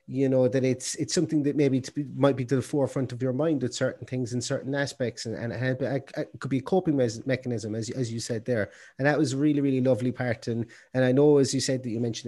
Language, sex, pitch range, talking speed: English, male, 125-155 Hz, 285 wpm